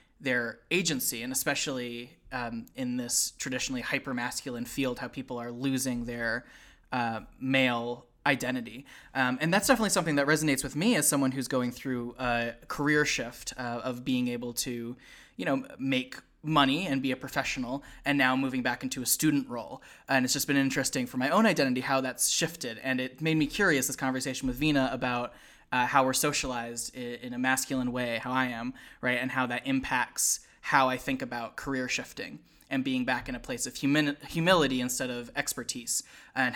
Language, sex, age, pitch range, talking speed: English, male, 20-39, 125-145 Hz, 185 wpm